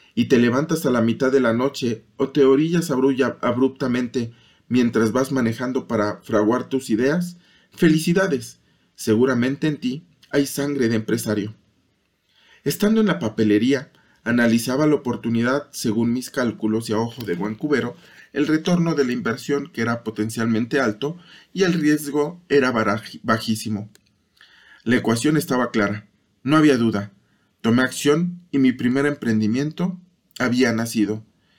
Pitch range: 115-145 Hz